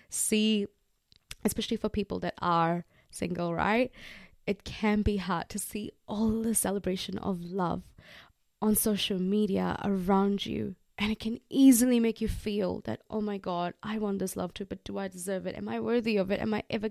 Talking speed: 190 wpm